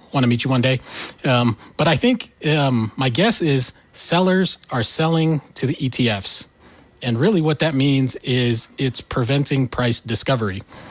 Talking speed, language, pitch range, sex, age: 165 wpm, English, 120-140 Hz, male, 30-49